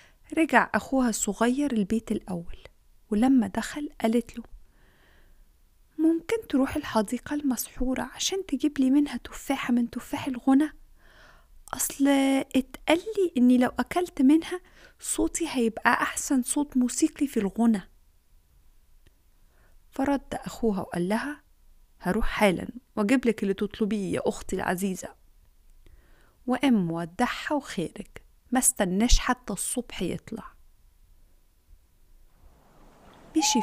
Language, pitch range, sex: Arabic, 200-275 Hz, female